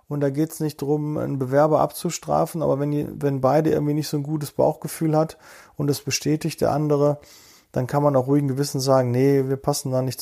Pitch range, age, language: 130-155 Hz, 40-59, German